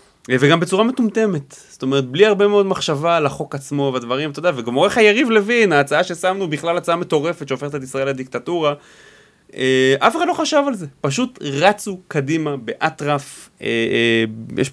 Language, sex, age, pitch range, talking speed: Hebrew, male, 20-39, 125-165 Hz, 170 wpm